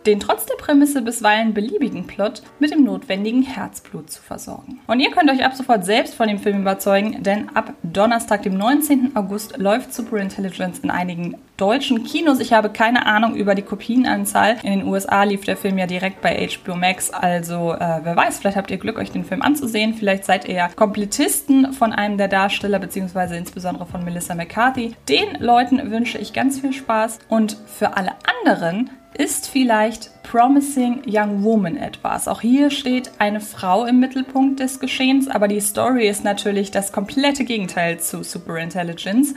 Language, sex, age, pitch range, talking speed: German, female, 20-39, 195-255 Hz, 180 wpm